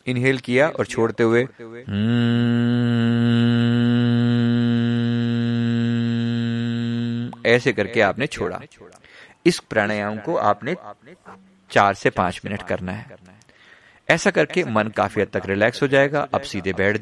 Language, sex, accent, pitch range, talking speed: Hindi, male, native, 100-125 Hz, 90 wpm